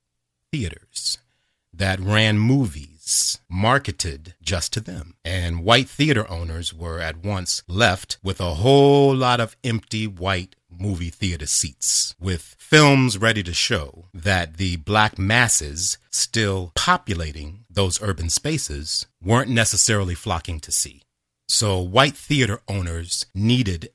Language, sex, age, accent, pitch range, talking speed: English, male, 30-49, American, 85-115 Hz, 125 wpm